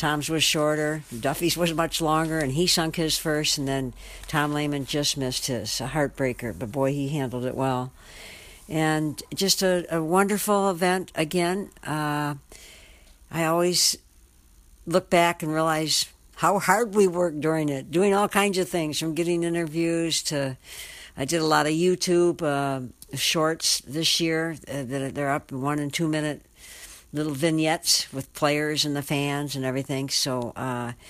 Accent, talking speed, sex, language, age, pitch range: American, 160 wpm, female, English, 60-79, 145-170 Hz